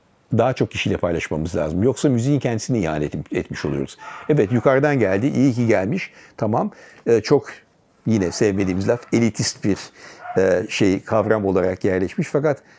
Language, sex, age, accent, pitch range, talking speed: Turkish, male, 60-79, native, 105-135 Hz, 145 wpm